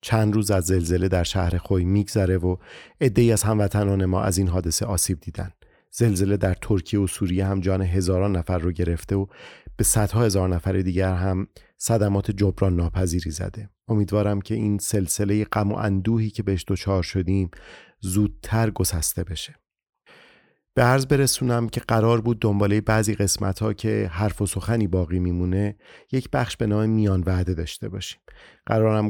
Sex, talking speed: male, 160 wpm